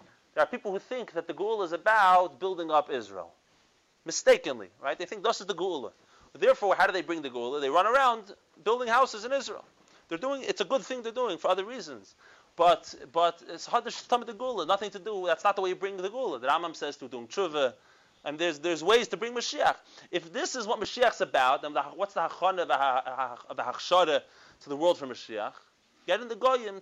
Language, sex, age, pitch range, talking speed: English, male, 30-49, 165-230 Hz, 215 wpm